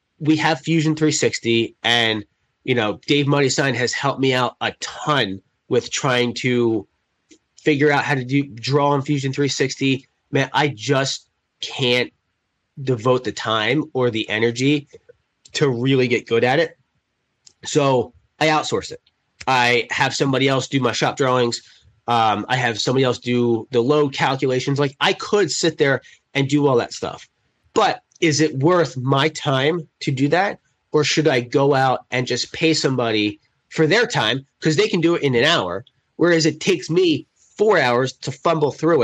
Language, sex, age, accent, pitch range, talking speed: English, male, 30-49, American, 125-155 Hz, 170 wpm